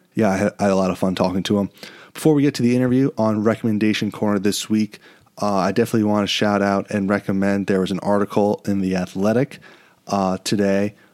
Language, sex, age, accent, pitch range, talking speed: English, male, 30-49, American, 95-110 Hz, 210 wpm